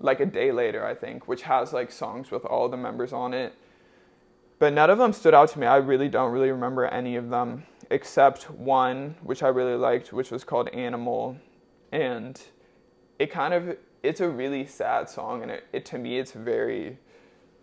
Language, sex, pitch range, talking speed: English, male, 125-150 Hz, 195 wpm